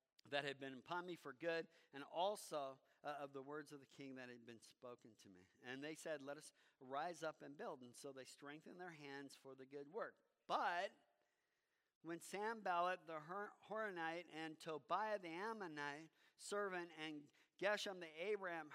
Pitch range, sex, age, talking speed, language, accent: 140-170 Hz, male, 50-69, 175 wpm, English, American